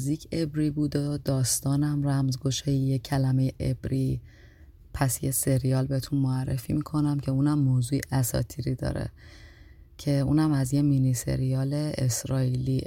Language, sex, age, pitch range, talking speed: Persian, female, 30-49, 130-145 Hz, 115 wpm